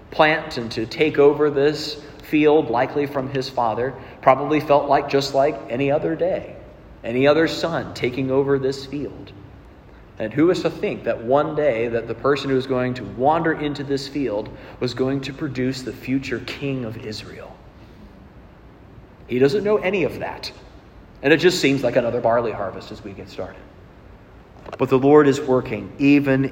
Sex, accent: male, American